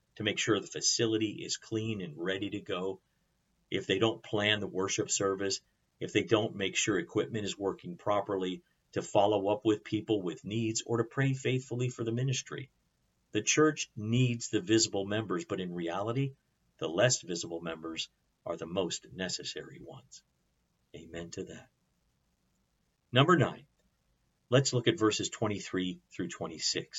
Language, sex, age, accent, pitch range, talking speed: English, male, 50-69, American, 95-115 Hz, 160 wpm